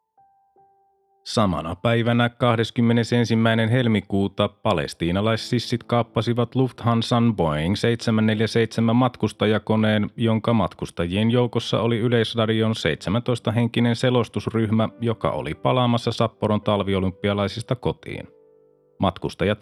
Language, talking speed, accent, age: Finnish, 75 wpm, native, 30-49